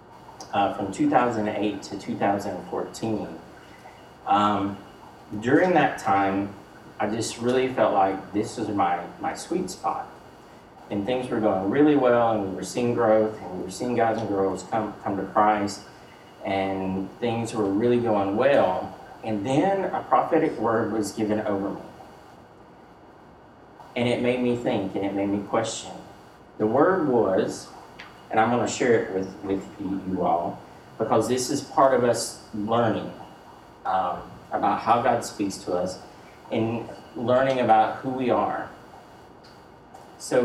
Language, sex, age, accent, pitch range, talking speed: English, male, 40-59, American, 100-120 Hz, 150 wpm